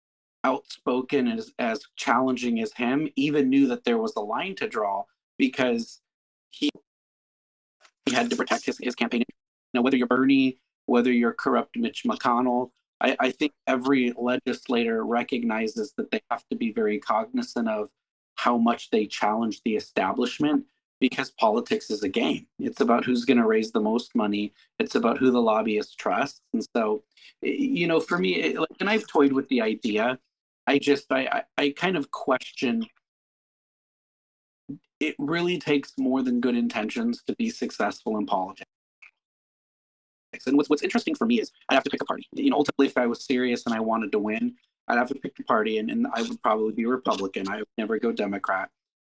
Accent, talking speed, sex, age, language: American, 185 wpm, male, 30-49, English